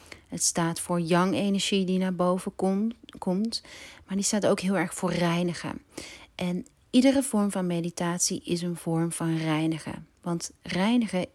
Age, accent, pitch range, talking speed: 40-59, Dutch, 160-190 Hz, 150 wpm